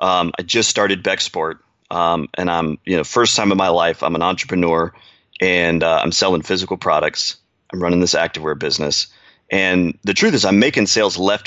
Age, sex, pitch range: 30-49, male, 85-100 Hz